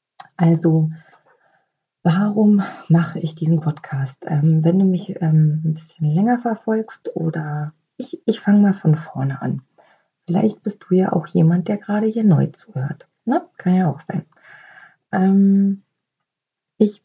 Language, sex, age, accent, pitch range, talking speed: German, female, 30-49, German, 160-195 Hz, 140 wpm